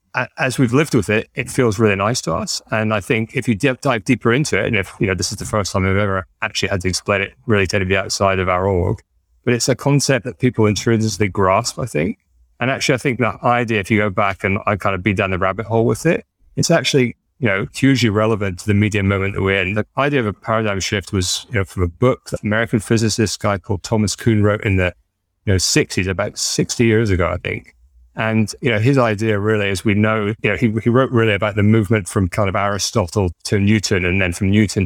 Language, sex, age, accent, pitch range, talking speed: English, male, 30-49, British, 95-115 Hz, 255 wpm